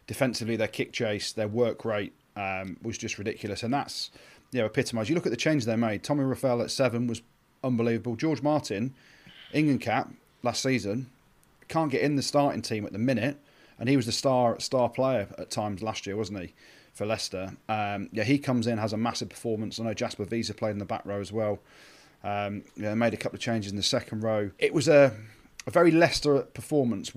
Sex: male